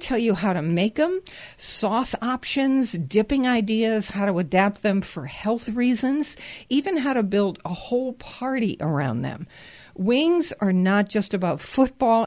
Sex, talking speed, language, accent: female, 155 wpm, English, American